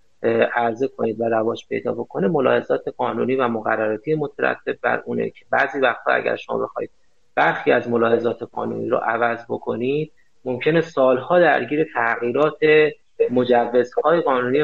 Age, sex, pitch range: 30-49, male, 120-190 Hz